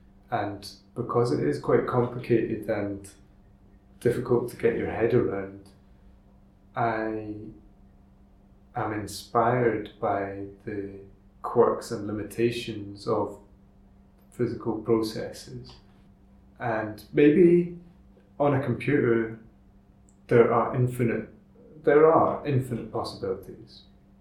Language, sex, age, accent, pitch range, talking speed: English, male, 30-49, British, 100-115 Hz, 90 wpm